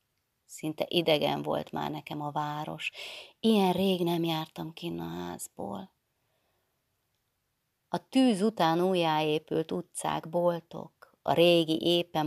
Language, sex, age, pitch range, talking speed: Hungarian, female, 30-49, 140-175 Hz, 110 wpm